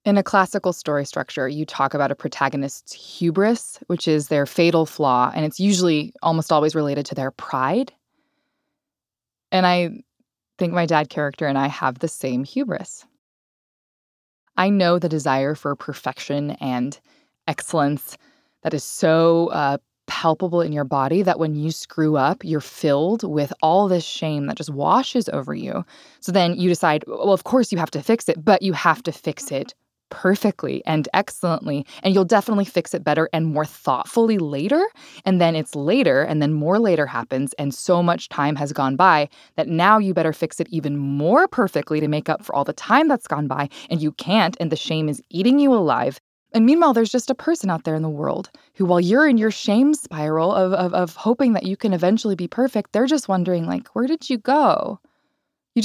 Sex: female